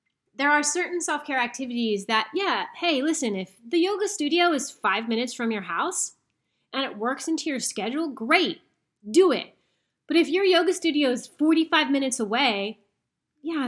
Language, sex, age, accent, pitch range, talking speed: English, female, 30-49, American, 210-300 Hz, 165 wpm